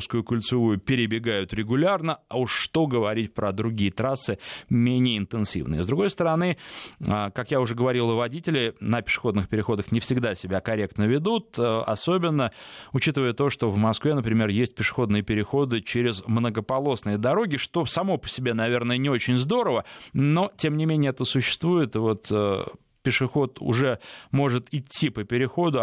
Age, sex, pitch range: 20-39, male, 110-135 Hz